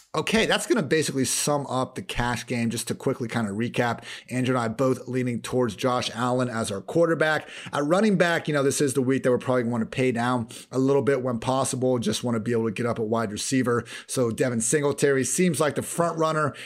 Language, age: English, 30-49